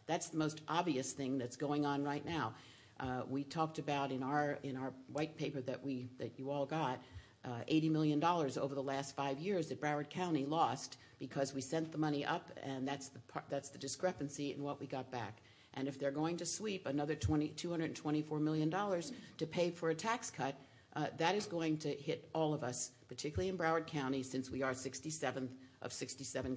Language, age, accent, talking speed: English, 50-69, American, 205 wpm